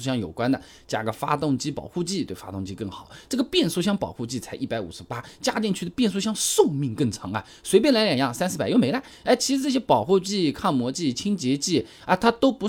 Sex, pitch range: male, 120-200 Hz